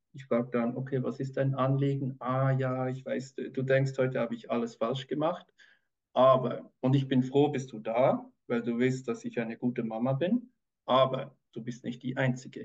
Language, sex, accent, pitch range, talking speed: German, male, German, 125-150 Hz, 210 wpm